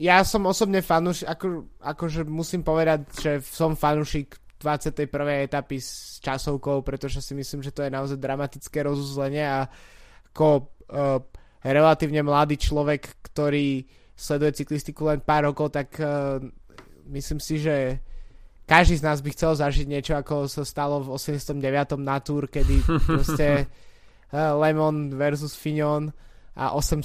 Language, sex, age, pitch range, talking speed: Slovak, male, 20-39, 140-155 Hz, 140 wpm